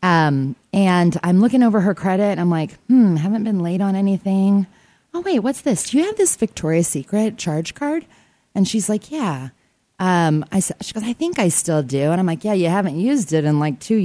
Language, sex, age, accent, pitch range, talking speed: English, female, 20-39, American, 150-210 Hz, 225 wpm